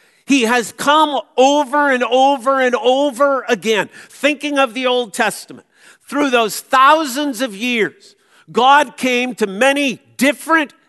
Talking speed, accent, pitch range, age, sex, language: 130 wpm, American, 200-270 Hz, 50-69, male, English